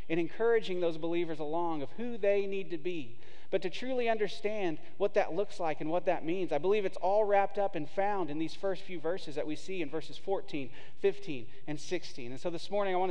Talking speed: 235 wpm